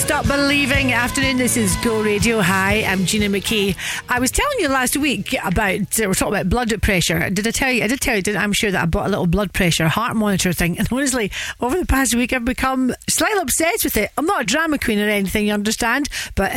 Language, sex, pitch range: English, female, 185-230 Hz